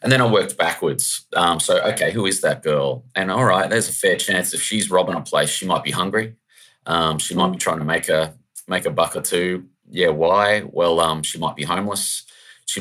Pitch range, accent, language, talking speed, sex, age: 75-95 Hz, Australian, English, 235 wpm, male, 20-39